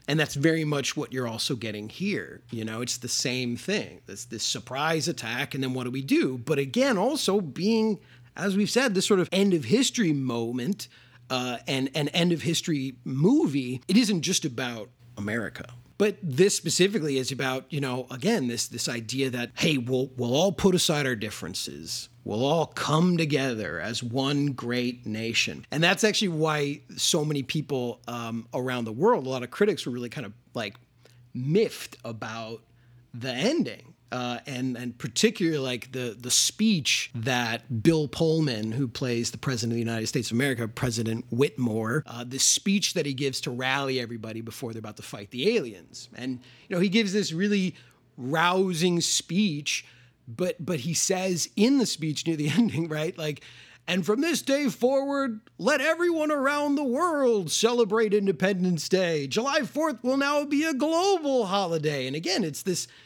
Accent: American